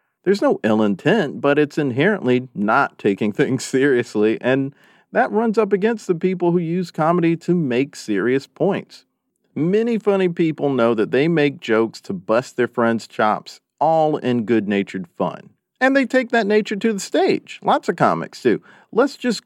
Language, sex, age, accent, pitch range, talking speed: English, male, 40-59, American, 120-185 Hz, 175 wpm